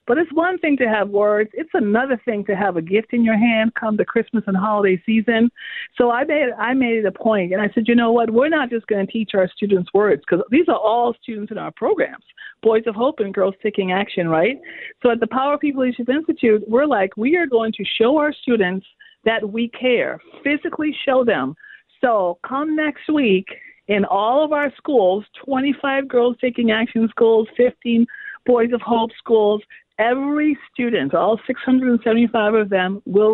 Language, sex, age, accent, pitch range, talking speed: English, female, 50-69, American, 205-255 Hz, 200 wpm